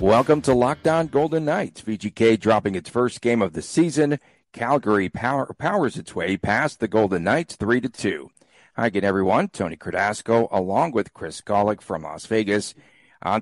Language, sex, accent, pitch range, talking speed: English, male, American, 100-120 Hz, 170 wpm